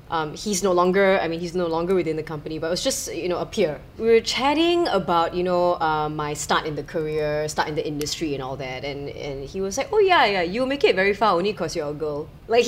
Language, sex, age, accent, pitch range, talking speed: English, female, 20-39, Malaysian, 160-245 Hz, 275 wpm